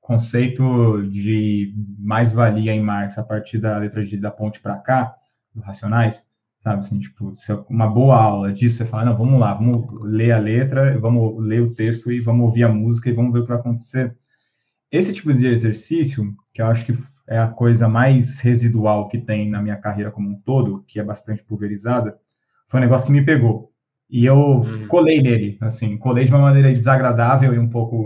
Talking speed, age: 195 wpm, 20-39